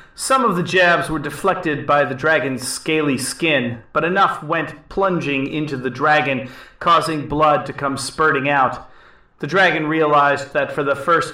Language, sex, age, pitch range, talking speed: English, male, 30-49, 125-165 Hz, 165 wpm